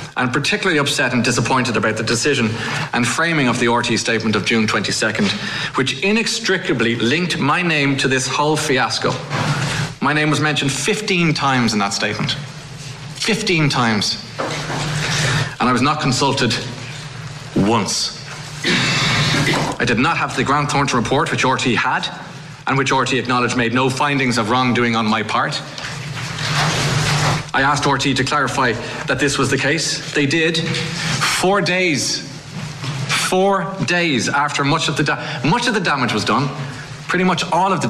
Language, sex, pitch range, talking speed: English, male, 125-150 Hz, 155 wpm